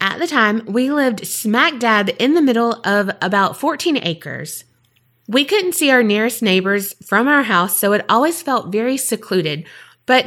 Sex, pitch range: female, 180-250 Hz